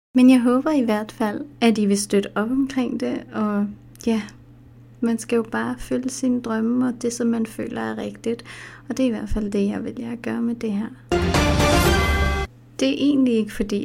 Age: 30-49